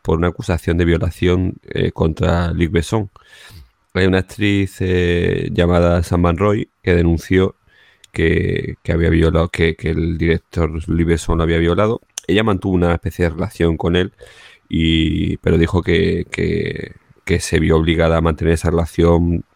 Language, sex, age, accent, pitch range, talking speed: Spanish, male, 30-49, Spanish, 85-95 Hz, 160 wpm